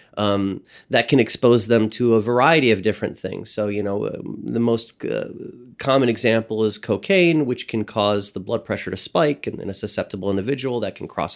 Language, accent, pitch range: English, American, 100-115 Hz